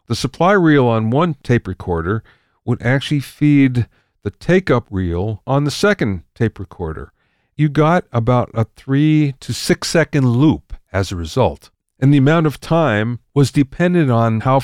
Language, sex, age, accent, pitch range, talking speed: English, male, 50-69, American, 105-140 Hz, 160 wpm